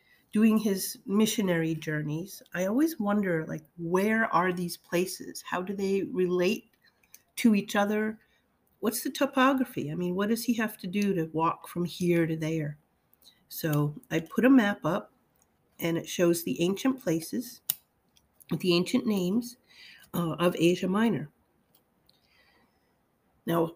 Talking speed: 140 wpm